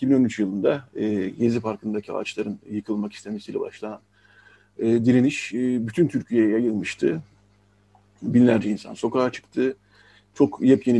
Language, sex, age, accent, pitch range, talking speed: Turkish, male, 50-69, native, 105-150 Hz, 115 wpm